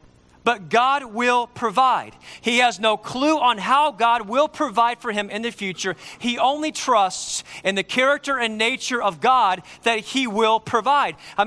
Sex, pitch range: male, 160-260 Hz